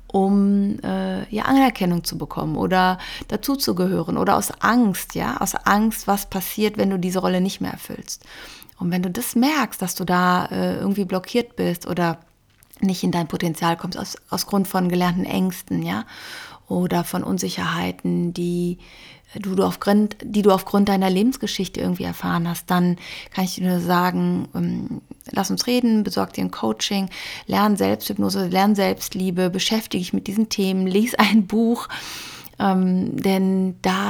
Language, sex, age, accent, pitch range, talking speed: German, female, 30-49, German, 170-200 Hz, 160 wpm